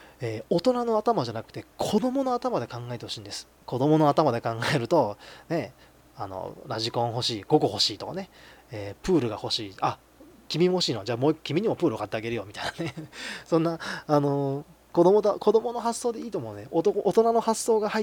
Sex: male